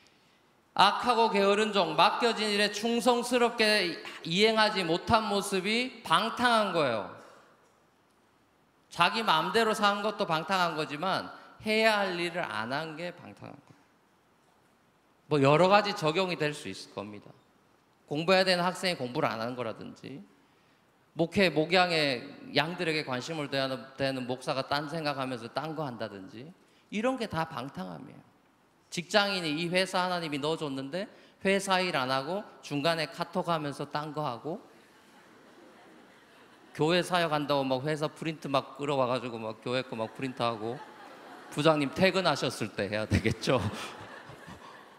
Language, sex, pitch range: Korean, male, 140-200 Hz